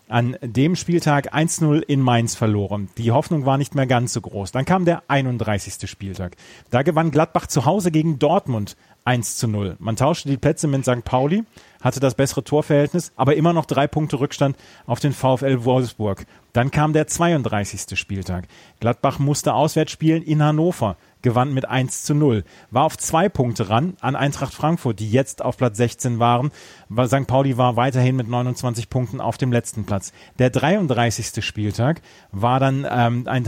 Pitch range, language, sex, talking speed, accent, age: 120-150 Hz, German, male, 175 wpm, German, 30-49